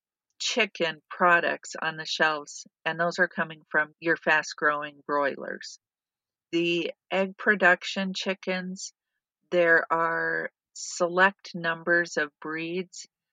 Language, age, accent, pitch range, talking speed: English, 50-69, American, 160-180 Hz, 105 wpm